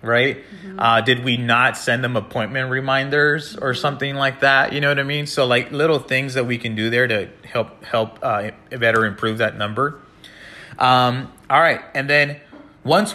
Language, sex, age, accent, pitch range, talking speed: English, male, 30-49, American, 115-145 Hz, 185 wpm